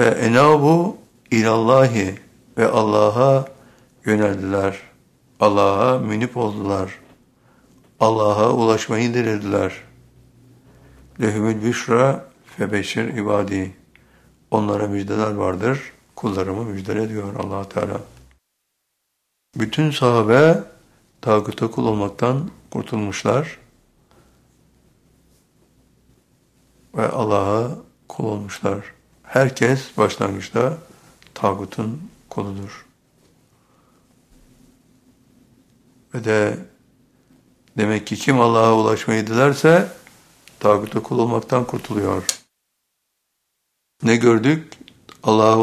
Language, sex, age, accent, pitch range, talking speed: Turkish, male, 60-79, native, 105-125 Hz, 70 wpm